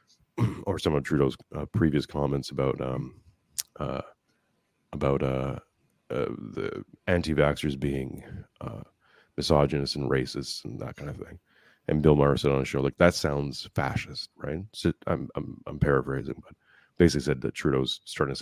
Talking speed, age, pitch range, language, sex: 155 wpm, 30-49, 70-85 Hz, English, male